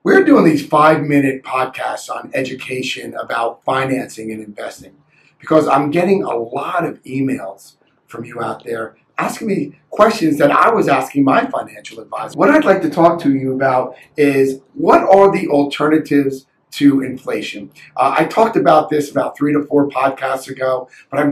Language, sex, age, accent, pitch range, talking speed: English, male, 40-59, American, 130-160 Hz, 170 wpm